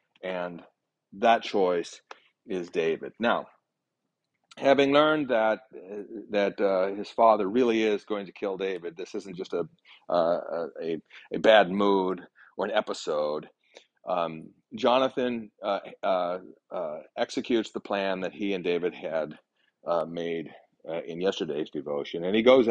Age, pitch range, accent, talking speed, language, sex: 40-59, 100-150 Hz, American, 140 wpm, English, male